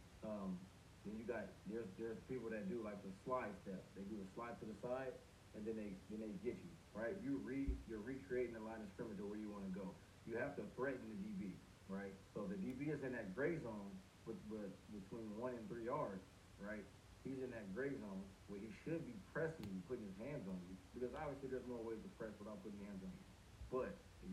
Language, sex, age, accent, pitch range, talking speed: English, male, 30-49, American, 95-135 Hz, 235 wpm